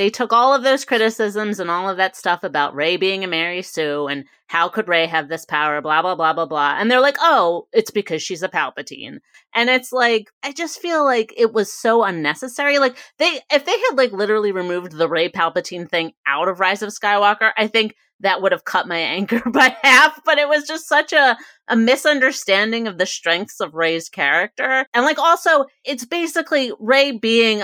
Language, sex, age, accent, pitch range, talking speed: English, female, 30-49, American, 185-260 Hz, 210 wpm